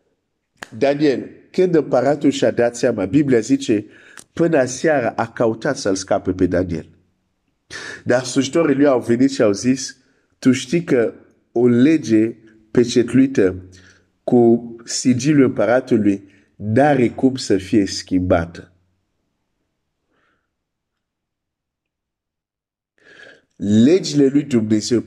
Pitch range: 115-160 Hz